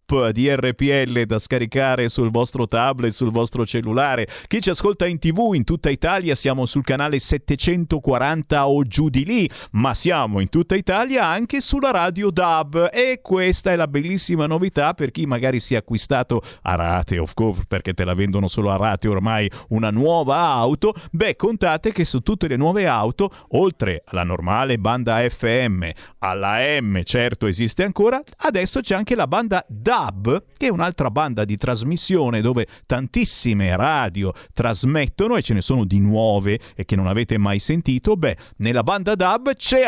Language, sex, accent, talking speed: Italian, male, native, 170 wpm